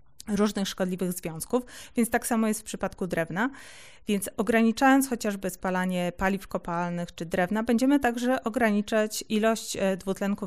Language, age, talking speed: Polish, 30-49, 130 wpm